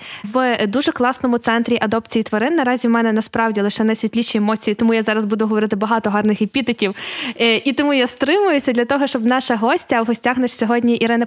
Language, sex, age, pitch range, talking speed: Ukrainian, female, 20-39, 225-265 Hz, 185 wpm